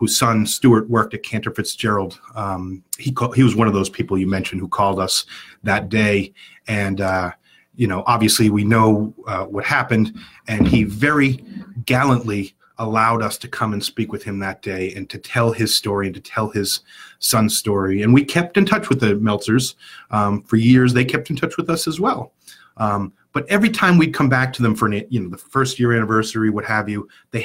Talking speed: 210 wpm